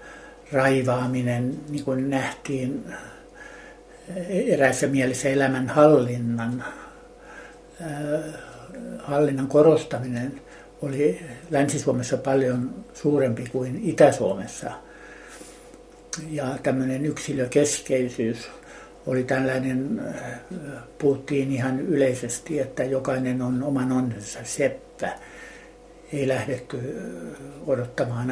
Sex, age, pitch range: male, 60-79, 130-145 Hz